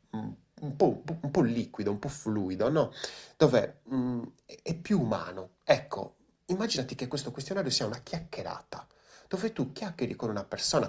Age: 30-49